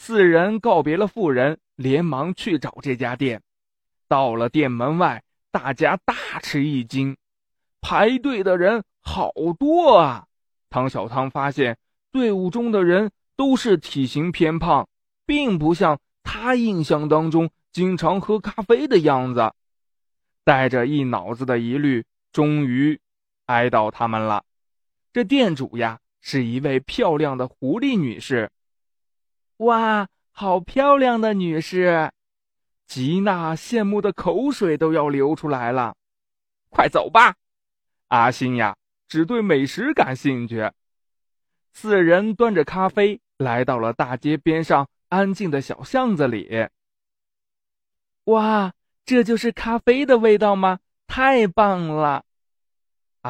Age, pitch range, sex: 20-39, 135-210 Hz, male